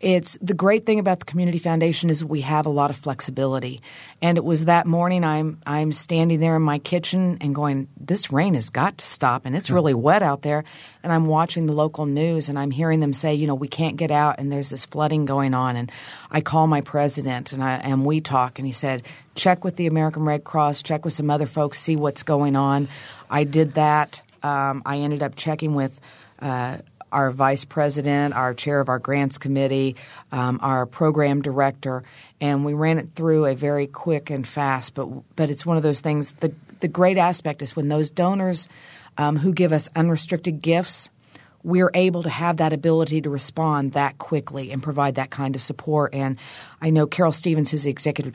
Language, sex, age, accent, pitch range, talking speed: English, female, 40-59, American, 140-160 Hz, 215 wpm